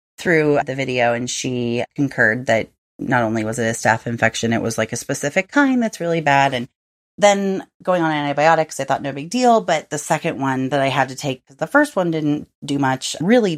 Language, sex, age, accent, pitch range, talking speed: English, female, 30-49, American, 135-175 Hz, 220 wpm